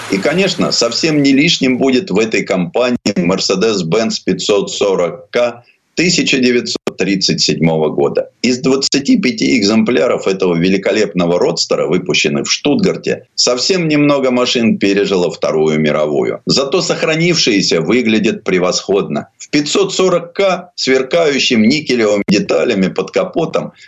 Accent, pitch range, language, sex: native, 110-175 Hz, Russian, male